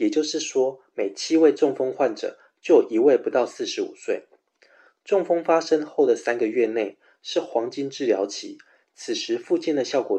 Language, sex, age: Chinese, male, 20-39